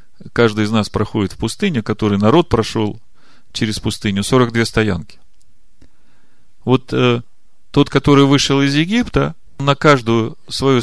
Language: Russian